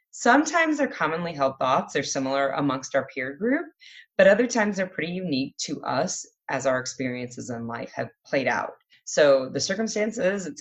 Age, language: 20-39, English